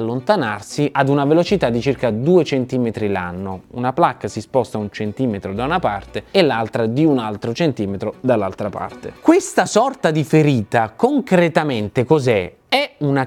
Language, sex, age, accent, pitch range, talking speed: Italian, male, 30-49, native, 110-175 Hz, 155 wpm